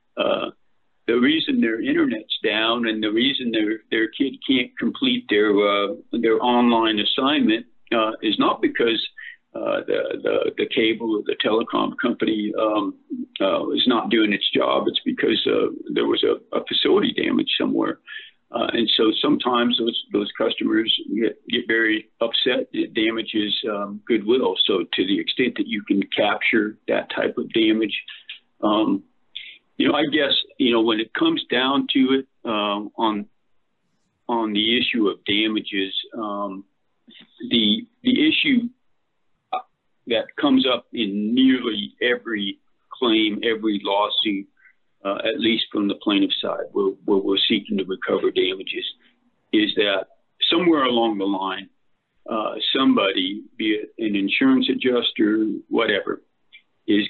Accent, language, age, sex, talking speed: American, English, 50-69, male, 145 wpm